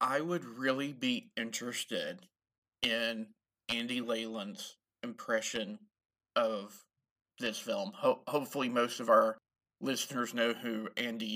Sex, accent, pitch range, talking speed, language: male, American, 115-145 Hz, 110 wpm, English